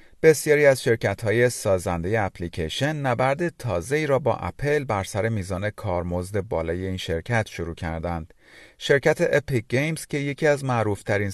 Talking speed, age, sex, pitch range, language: 145 wpm, 40-59, male, 90-135 Hz, Persian